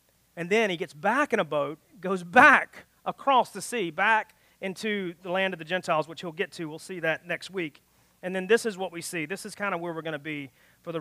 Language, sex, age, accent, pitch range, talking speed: English, male, 40-59, American, 170-220 Hz, 255 wpm